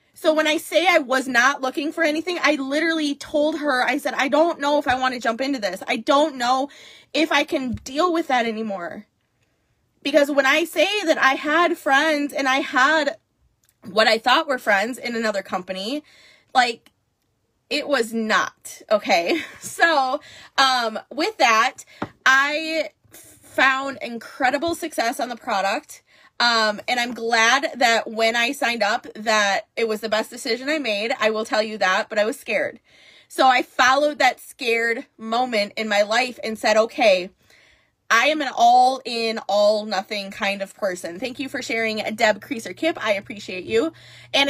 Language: English